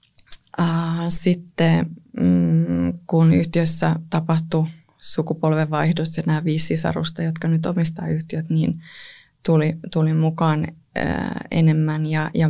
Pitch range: 155-170 Hz